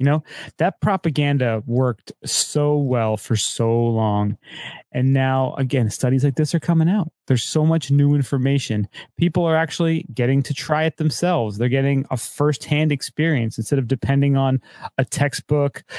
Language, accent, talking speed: English, American, 160 wpm